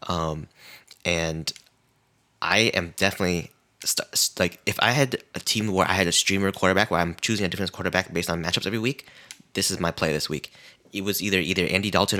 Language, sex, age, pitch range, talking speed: English, male, 20-39, 85-100 Hz, 195 wpm